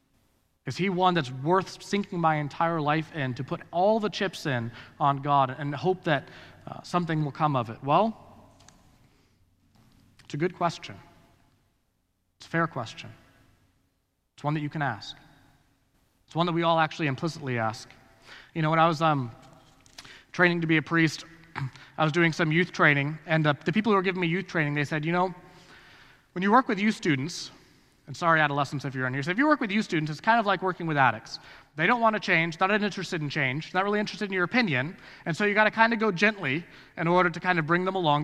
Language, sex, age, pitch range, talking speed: English, male, 30-49, 140-185 Hz, 220 wpm